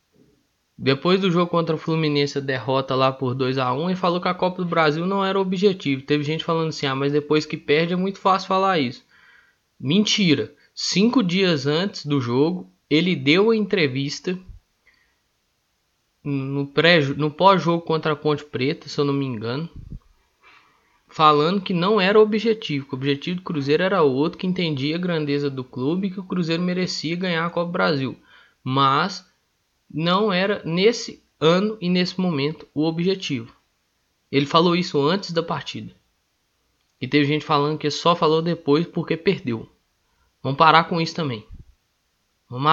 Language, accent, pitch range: Portuguese, Brazilian, 145-185 Hz